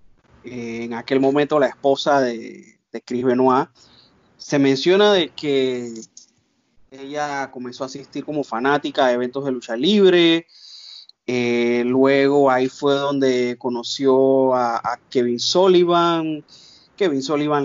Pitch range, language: 125-145 Hz, Spanish